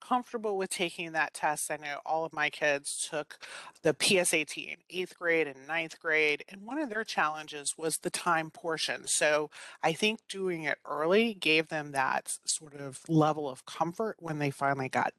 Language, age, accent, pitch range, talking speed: English, 30-49, American, 150-185 Hz, 185 wpm